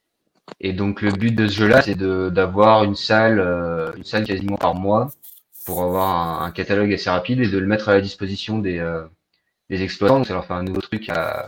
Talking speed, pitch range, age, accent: 230 wpm, 90-110 Hz, 30-49, French